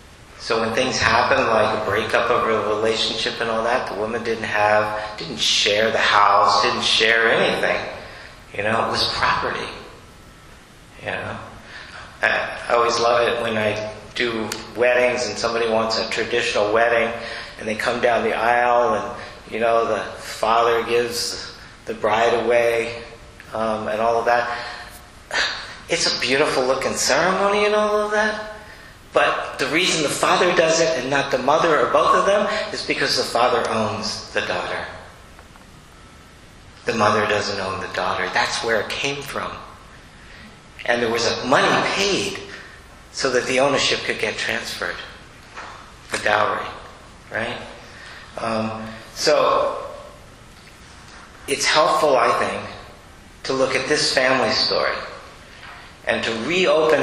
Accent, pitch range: American, 110-120 Hz